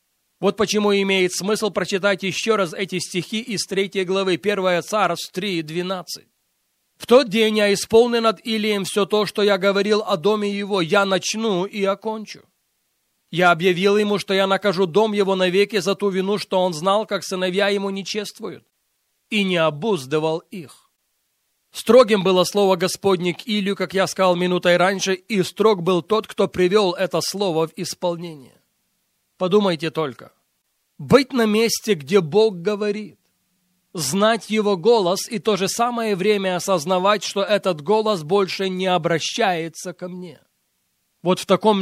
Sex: male